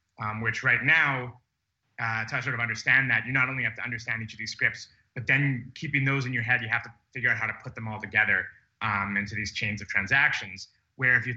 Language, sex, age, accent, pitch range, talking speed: English, male, 30-49, American, 100-125 Hz, 250 wpm